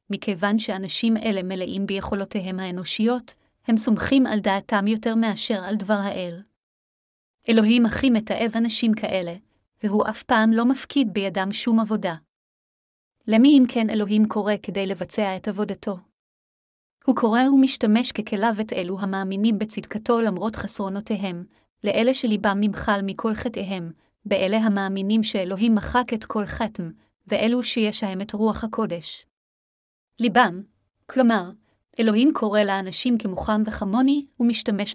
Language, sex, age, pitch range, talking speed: Hebrew, female, 30-49, 195-230 Hz, 125 wpm